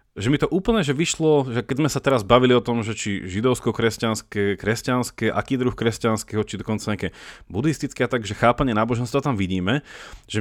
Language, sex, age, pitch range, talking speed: Slovak, male, 30-49, 110-140 Hz, 195 wpm